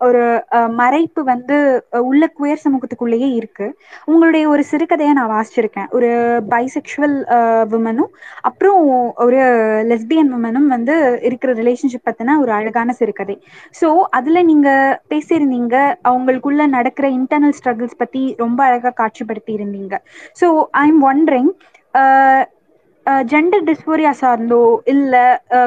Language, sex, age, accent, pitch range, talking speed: Tamil, female, 20-39, native, 245-315 Hz, 110 wpm